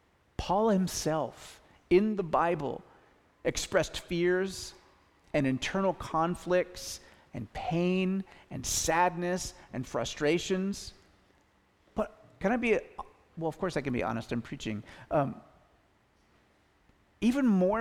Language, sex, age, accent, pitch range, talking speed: English, male, 40-59, American, 150-215 Hz, 110 wpm